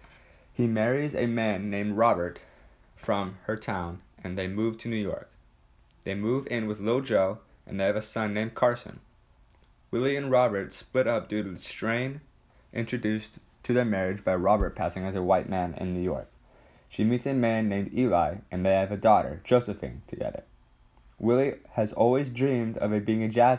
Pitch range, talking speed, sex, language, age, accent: 95-115 Hz, 185 wpm, male, English, 20-39, American